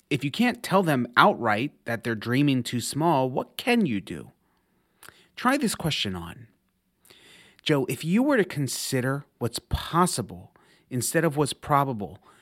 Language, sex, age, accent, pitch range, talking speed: English, male, 30-49, American, 115-175 Hz, 150 wpm